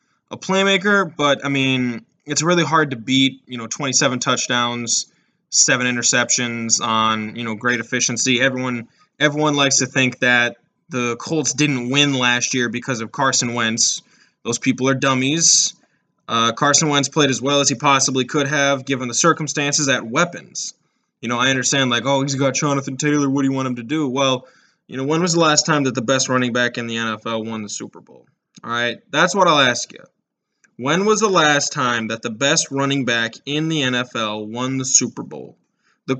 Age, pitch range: 10-29, 120-155 Hz